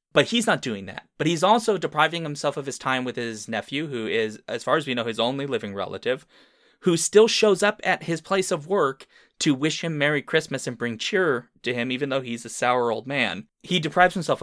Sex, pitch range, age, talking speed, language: male, 120-165 Hz, 20-39, 235 wpm, English